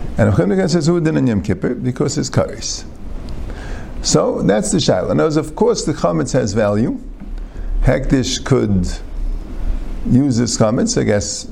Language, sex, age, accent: English, male, 50-69, American